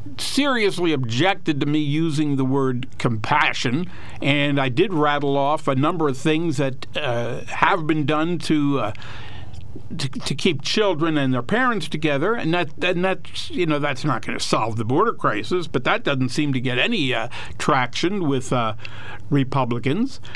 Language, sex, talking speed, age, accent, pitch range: English, male, 170 wpm, 60-79, American, 135-190 Hz